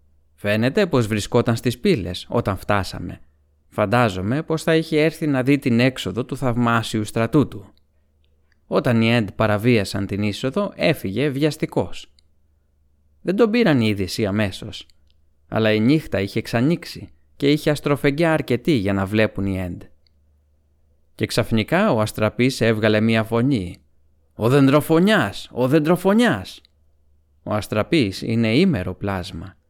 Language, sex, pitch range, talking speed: Greek, male, 90-130 Hz, 130 wpm